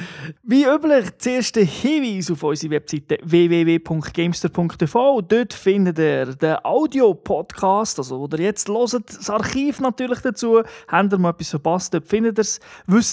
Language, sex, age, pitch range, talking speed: German, male, 30-49, 160-210 Hz, 140 wpm